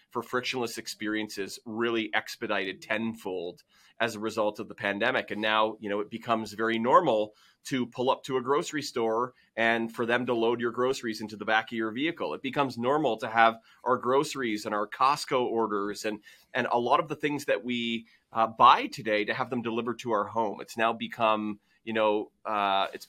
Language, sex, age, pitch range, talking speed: English, male, 30-49, 110-125 Hz, 200 wpm